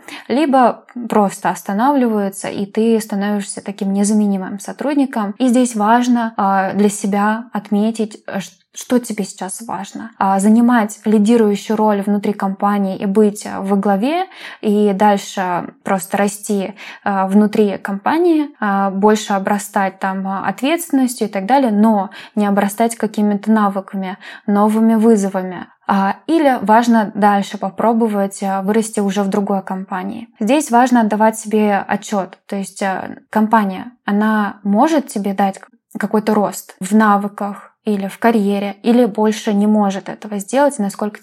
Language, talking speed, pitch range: Russian, 120 wpm, 200-225 Hz